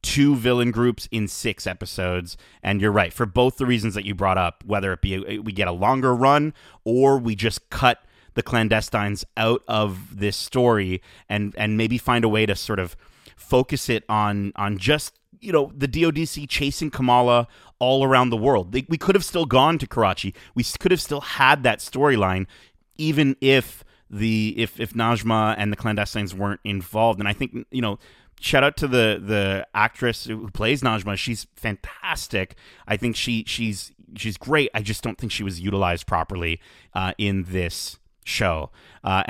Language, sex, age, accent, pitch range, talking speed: English, male, 30-49, American, 105-135 Hz, 180 wpm